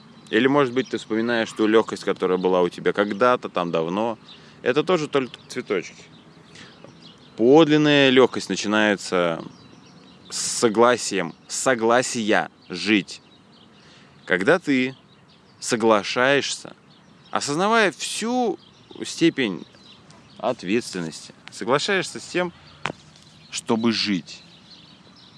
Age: 20-39